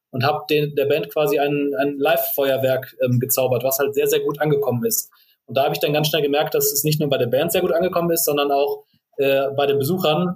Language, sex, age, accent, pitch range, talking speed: German, male, 30-49, German, 140-160 Hz, 245 wpm